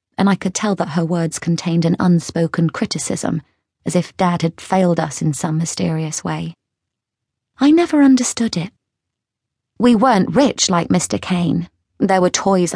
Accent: British